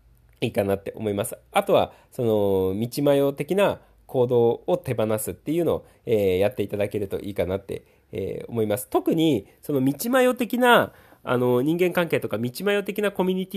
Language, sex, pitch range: Japanese, male, 105-165 Hz